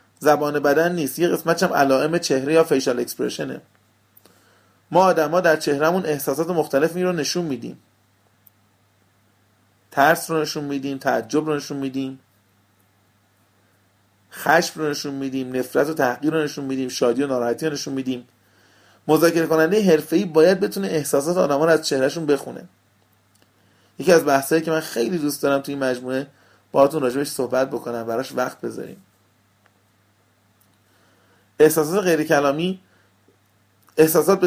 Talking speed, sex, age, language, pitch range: 135 wpm, male, 30-49, Persian, 100-165 Hz